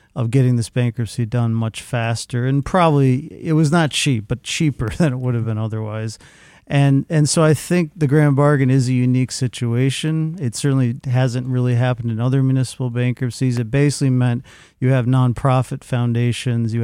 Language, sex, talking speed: English, male, 180 wpm